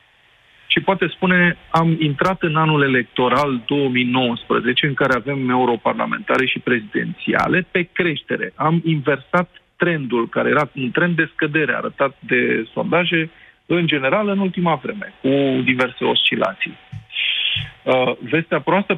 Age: 40-59